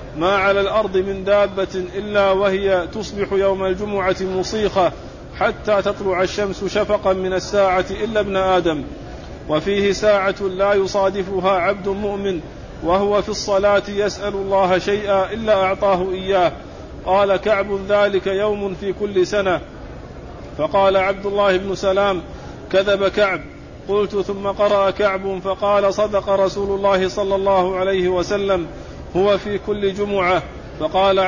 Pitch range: 190-205 Hz